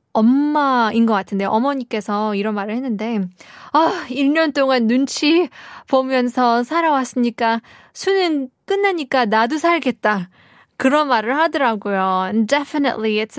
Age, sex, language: 20-39, female, Korean